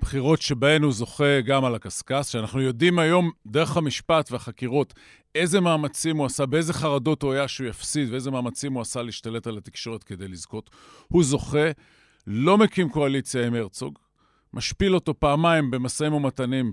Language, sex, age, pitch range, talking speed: Hebrew, male, 50-69, 125-160 Hz, 160 wpm